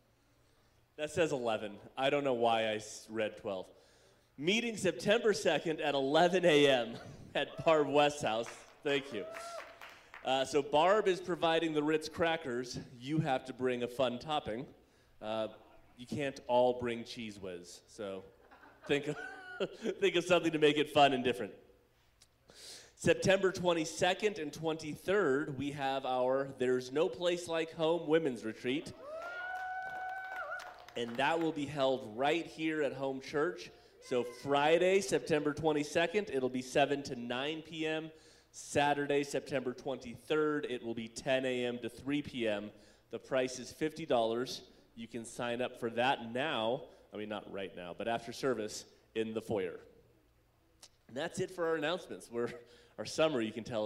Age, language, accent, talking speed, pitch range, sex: 30-49, English, American, 150 wpm, 120-165 Hz, male